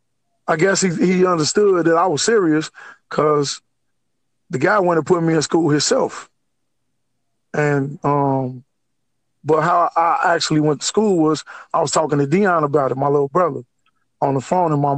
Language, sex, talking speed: English, male, 175 wpm